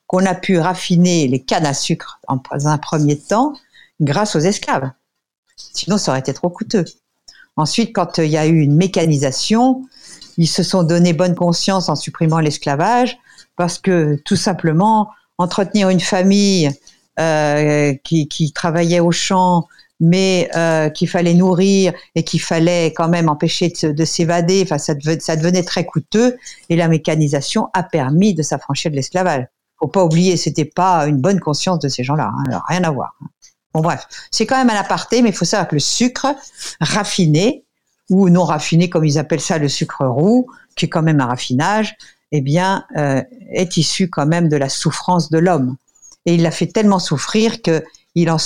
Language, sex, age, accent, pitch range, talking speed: French, female, 50-69, French, 150-190 Hz, 185 wpm